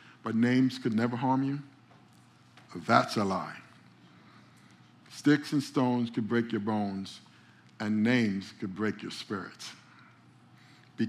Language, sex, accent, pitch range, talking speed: English, male, American, 120-150 Hz, 125 wpm